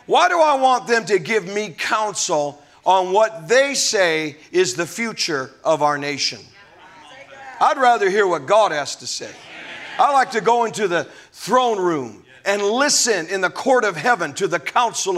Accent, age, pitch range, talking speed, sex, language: American, 50-69, 175-265 Hz, 180 wpm, male, English